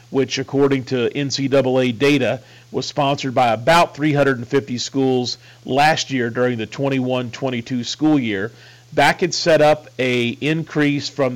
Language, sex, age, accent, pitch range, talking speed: English, male, 40-59, American, 125-145 Hz, 125 wpm